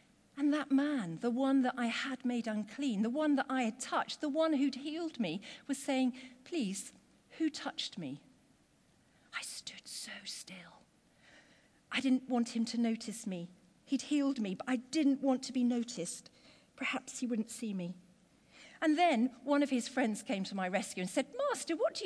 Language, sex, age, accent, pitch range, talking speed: English, female, 50-69, British, 230-295 Hz, 180 wpm